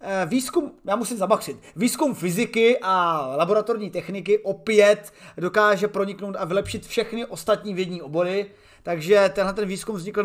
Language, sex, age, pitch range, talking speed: Czech, male, 30-49, 195-225 Hz, 135 wpm